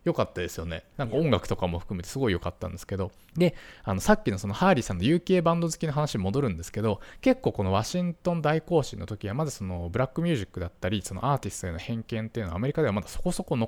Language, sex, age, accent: Japanese, male, 20-39, native